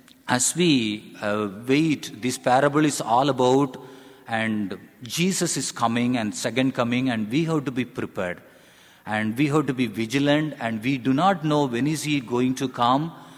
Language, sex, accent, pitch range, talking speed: English, male, Indian, 120-160 Hz, 175 wpm